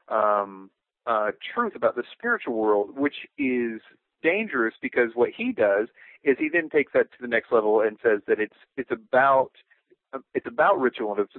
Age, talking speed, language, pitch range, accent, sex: 30-49, 180 wpm, English, 110-150 Hz, American, male